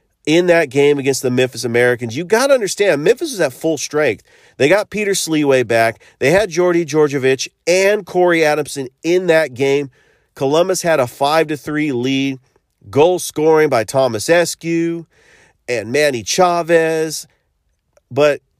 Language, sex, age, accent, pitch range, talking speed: English, male, 40-59, American, 120-160 Hz, 145 wpm